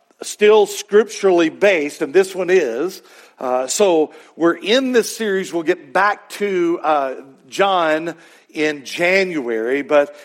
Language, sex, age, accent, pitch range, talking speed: English, male, 50-69, American, 155-215 Hz, 130 wpm